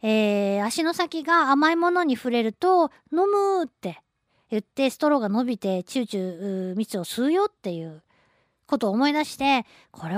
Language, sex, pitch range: Japanese, female, 205-300 Hz